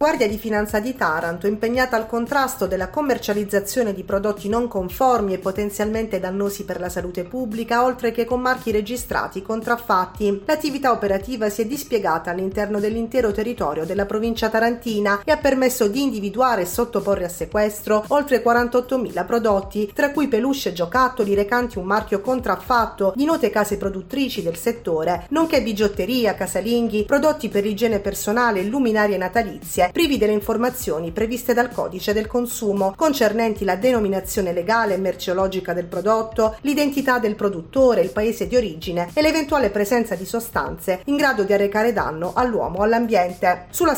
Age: 30-49